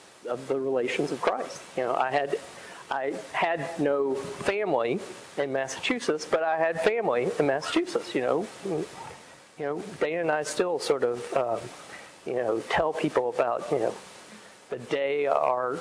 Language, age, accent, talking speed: English, 40-59, American, 160 wpm